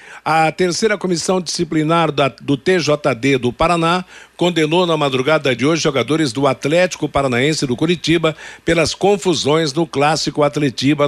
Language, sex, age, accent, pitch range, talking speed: Portuguese, male, 60-79, Brazilian, 135-170 Hz, 130 wpm